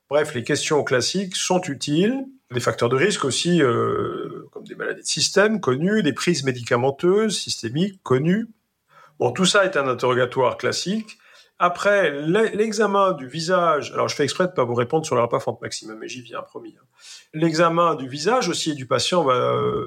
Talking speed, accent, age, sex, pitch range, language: 180 wpm, French, 50-69, male, 125-185 Hz, French